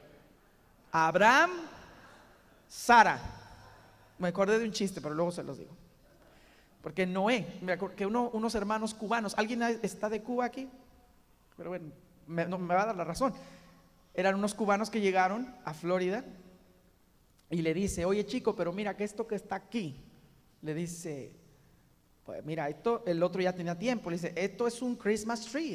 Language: Spanish